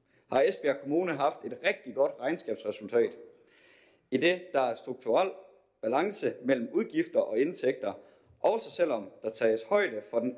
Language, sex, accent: Danish, male, native